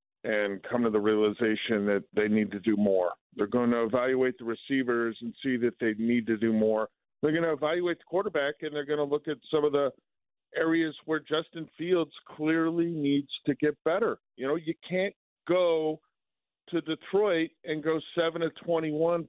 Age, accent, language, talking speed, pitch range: 50-69, American, English, 185 wpm, 125-155 Hz